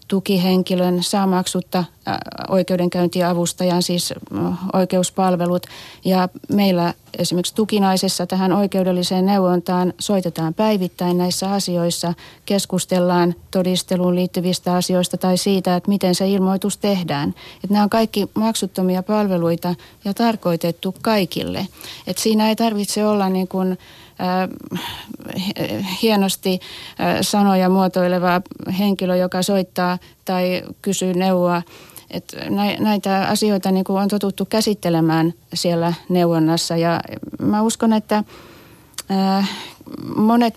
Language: Finnish